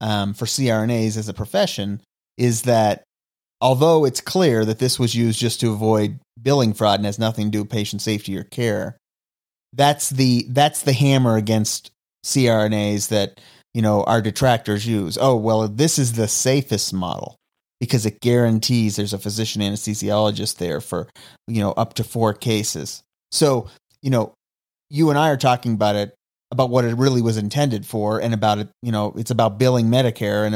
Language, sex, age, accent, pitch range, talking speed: English, male, 30-49, American, 105-130 Hz, 180 wpm